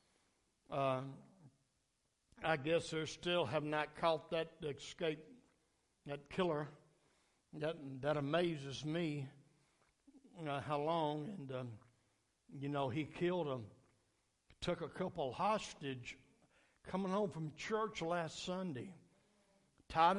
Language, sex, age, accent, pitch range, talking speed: English, male, 60-79, American, 140-185 Hz, 110 wpm